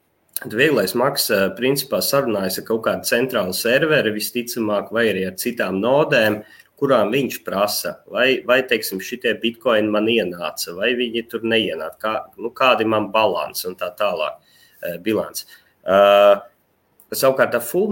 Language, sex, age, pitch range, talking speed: English, male, 30-49, 95-120 Hz, 135 wpm